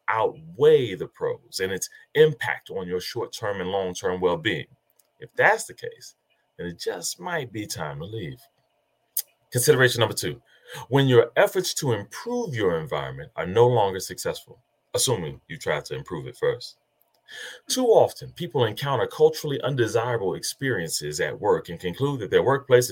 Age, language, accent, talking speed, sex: 30-49, English, American, 155 wpm, male